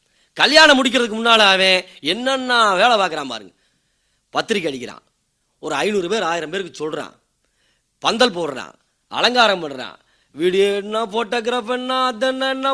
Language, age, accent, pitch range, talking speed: Tamil, 30-49, native, 210-280 Hz, 115 wpm